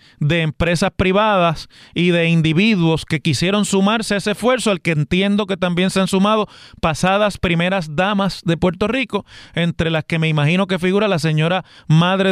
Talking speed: 175 wpm